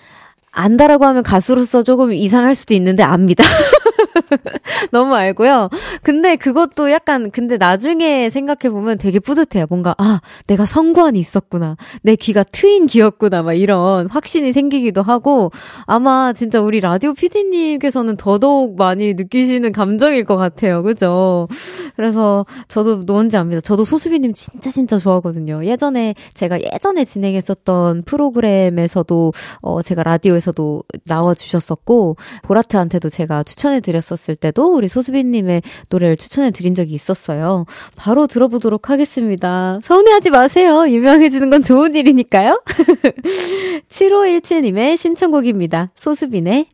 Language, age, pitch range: Korean, 20-39, 185-285 Hz